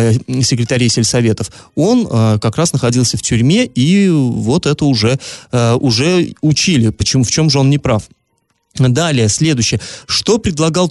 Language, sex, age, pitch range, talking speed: Russian, male, 30-49, 115-150 Hz, 145 wpm